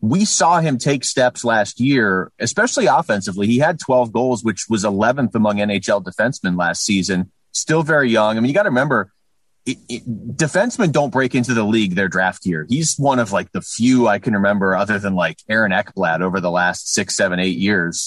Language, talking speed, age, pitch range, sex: English, 200 wpm, 30-49, 100-135 Hz, male